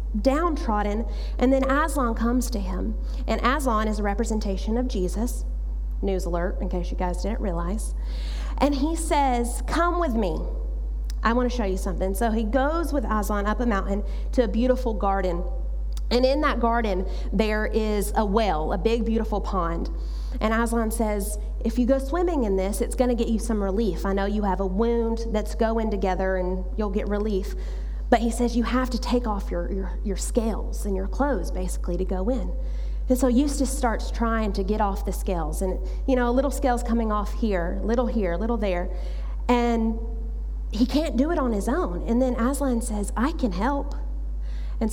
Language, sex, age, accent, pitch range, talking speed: English, female, 30-49, American, 195-250 Hz, 195 wpm